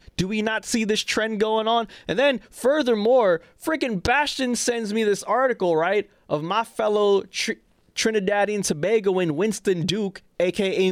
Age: 20-39